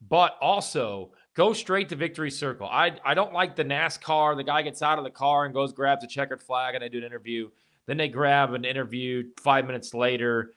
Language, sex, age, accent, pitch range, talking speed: English, male, 30-49, American, 125-155 Hz, 220 wpm